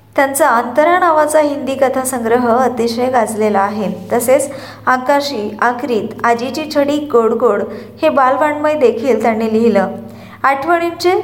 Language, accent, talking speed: Marathi, native, 110 wpm